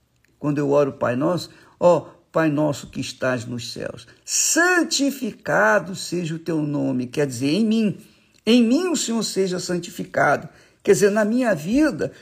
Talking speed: 160 wpm